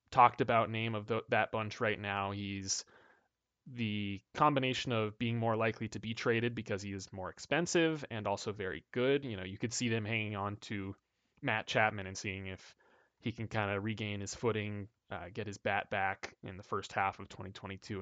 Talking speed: 195 wpm